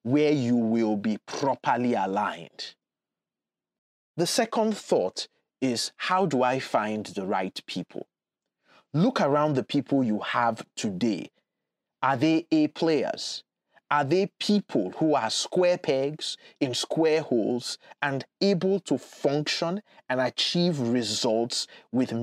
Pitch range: 125-175 Hz